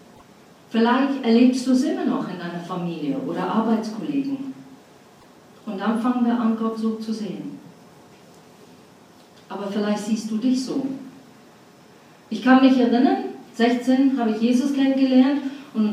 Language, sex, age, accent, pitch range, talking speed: German, female, 40-59, German, 225-275 Hz, 130 wpm